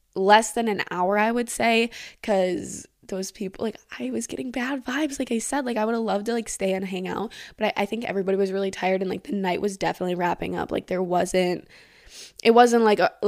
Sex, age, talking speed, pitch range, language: female, 10-29, 240 wpm, 185-235 Hz, English